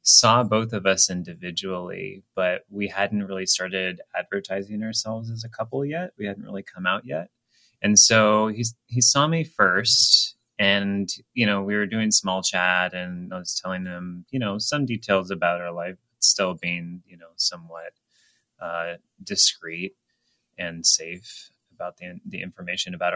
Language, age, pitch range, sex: English, 30-49, 95-115 Hz, male